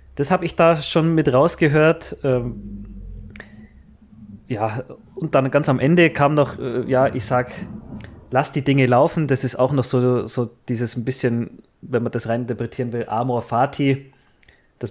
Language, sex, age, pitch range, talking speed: German, male, 30-49, 125-150 Hz, 170 wpm